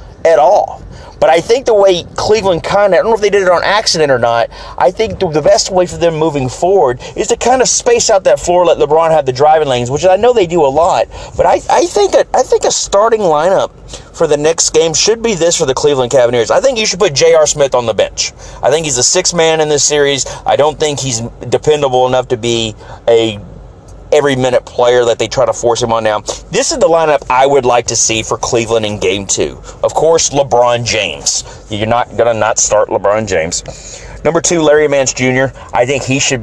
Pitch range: 120-175 Hz